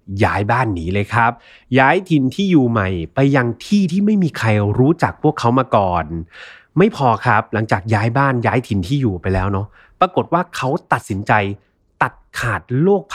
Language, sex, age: Thai, male, 30-49